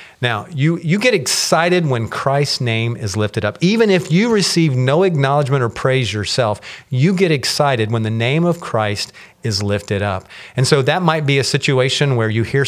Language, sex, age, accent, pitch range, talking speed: English, male, 40-59, American, 105-155 Hz, 195 wpm